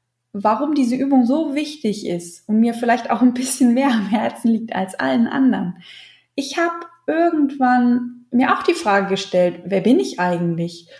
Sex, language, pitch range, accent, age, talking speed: female, German, 200-255 Hz, German, 20-39, 170 wpm